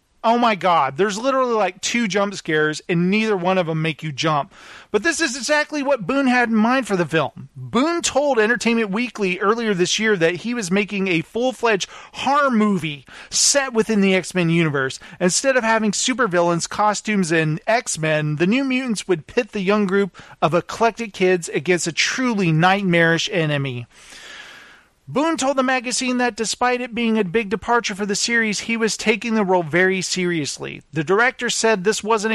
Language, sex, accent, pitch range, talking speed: English, male, American, 165-230 Hz, 180 wpm